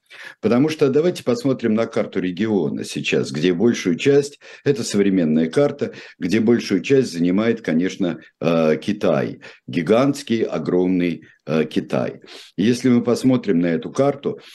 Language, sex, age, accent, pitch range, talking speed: Russian, male, 50-69, native, 90-125 Hz, 120 wpm